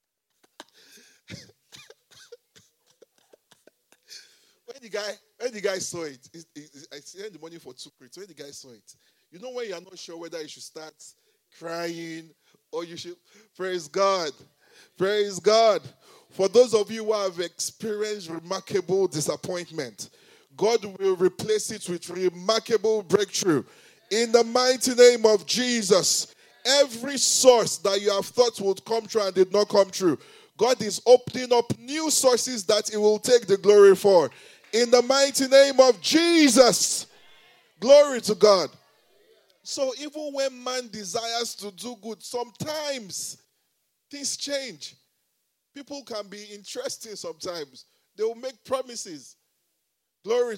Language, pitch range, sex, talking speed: English, 185-255 Hz, male, 140 wpm